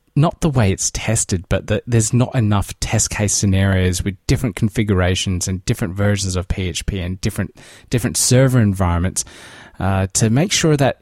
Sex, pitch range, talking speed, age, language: male, 95-125 Hz, 170 wpm, 20-39, English